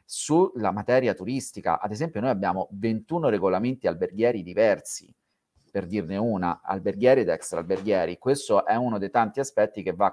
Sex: male